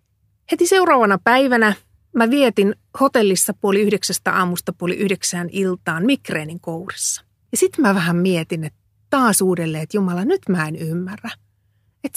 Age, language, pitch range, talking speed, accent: 30-49, Finnish, 170-240 Hz, 145 wpm, native